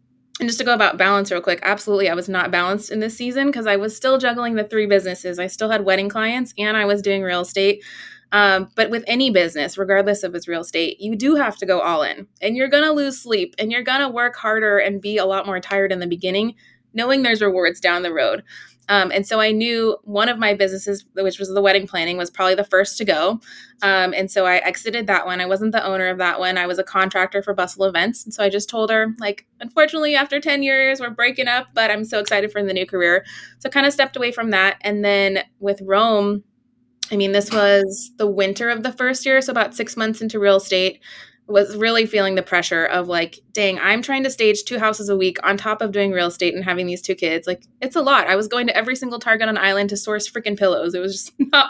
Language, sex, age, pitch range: English, female, 20-39, 190-230 Hz